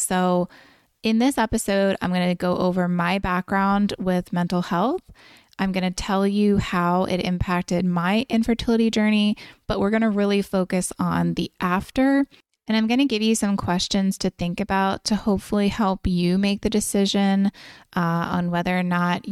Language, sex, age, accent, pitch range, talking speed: English, female, 20-39, American, 175-210 Hz, 175 wpm